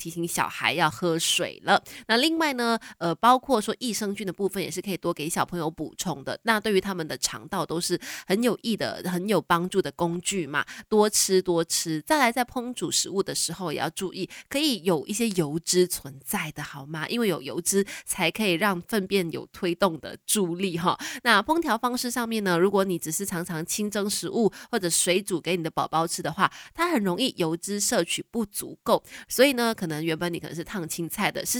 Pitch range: 170-215 Hz